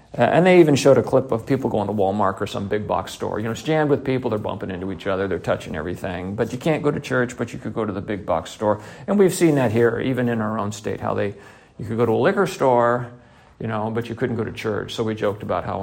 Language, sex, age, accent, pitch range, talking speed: English, male, 50-69, American, 110-140 Hz, 290 wpm